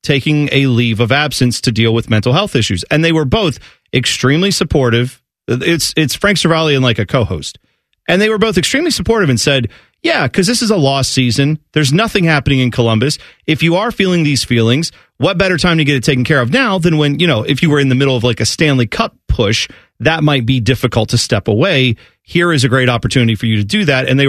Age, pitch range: 40-59, 125-180 Hz